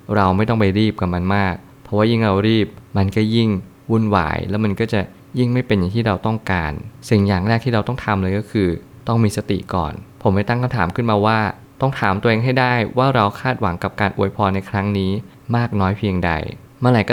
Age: 20-39